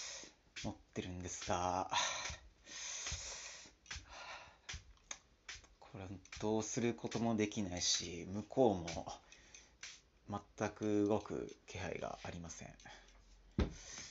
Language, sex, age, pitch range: Japanese, male, 40-59, 85-110 Hz